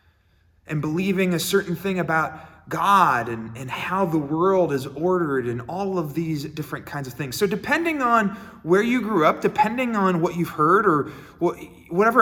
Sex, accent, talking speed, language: male, American, 180 wpm, English